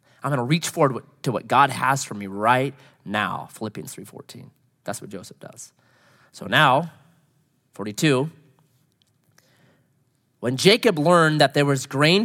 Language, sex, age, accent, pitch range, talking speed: English, male, 30-49, American, 135-210 Hz, 140 wpm